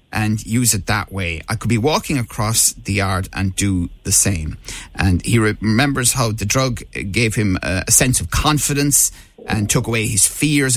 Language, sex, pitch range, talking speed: English, male, 90-115 Hz, 190 wpm